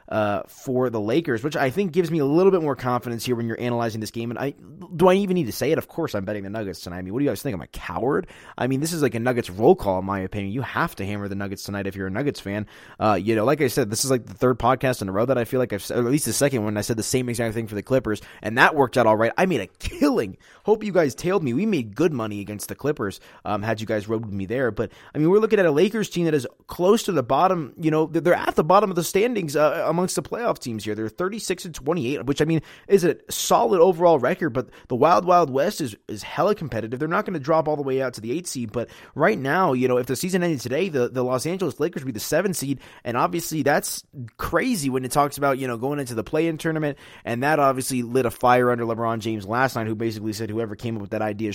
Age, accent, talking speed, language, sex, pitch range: 20-39, American, 300 wpm, English, male, 110-155 Hz